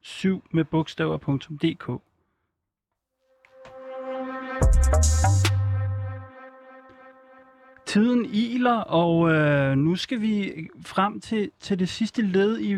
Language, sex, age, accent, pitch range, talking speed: Danish, male, 30-49, native, 150-195 Hz, 80 wpm